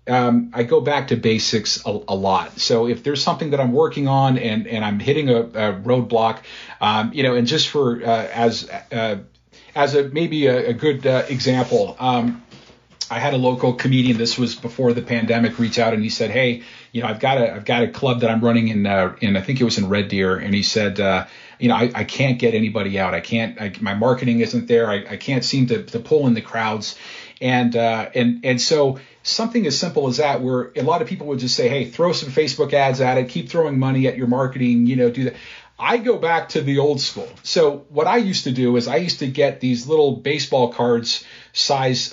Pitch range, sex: 115-140 Hz, male